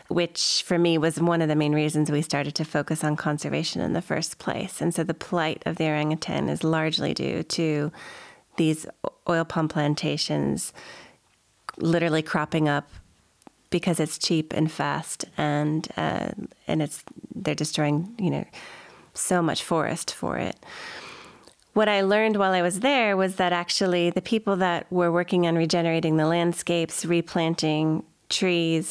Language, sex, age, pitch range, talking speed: English, female, 30-49, 155-180 Hz, 160 wpm